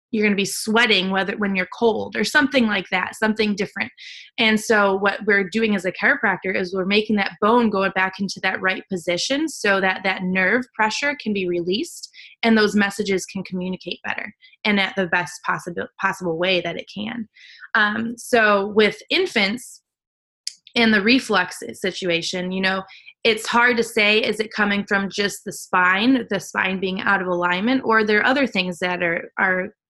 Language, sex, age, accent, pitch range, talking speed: English, female, 20-39, American, 190-225 Hz, 185 wpm